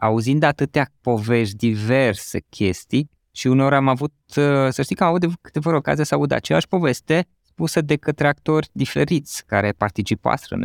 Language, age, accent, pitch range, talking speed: Romanian, 20-39, native, 115-165 Hz, 160 wpm